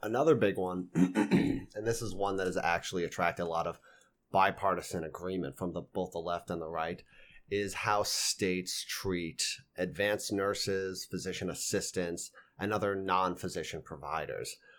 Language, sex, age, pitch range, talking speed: English, male, 30-49, 85-100 Hz, 140 wpm